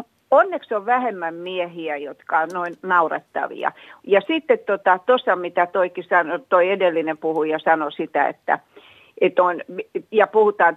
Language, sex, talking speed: Finnish, female, 130 wpm